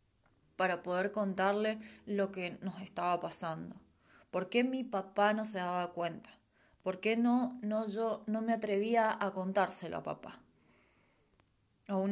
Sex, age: female, 20-39